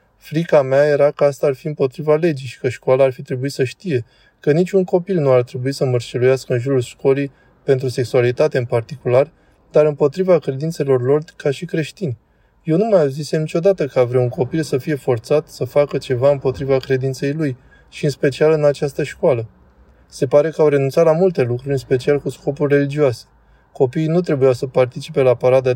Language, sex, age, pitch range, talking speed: Romanian, male, 20-39, 130-150 Hz, 195 wpm